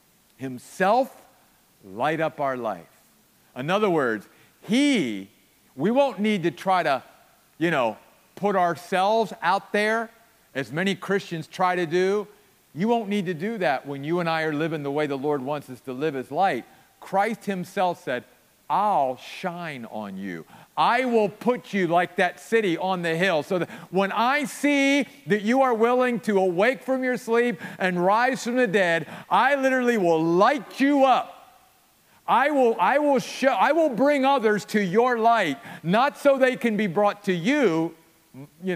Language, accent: English, American